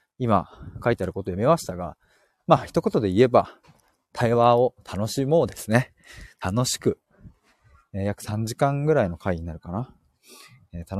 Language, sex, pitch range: Japanese, male, 95-125 Hz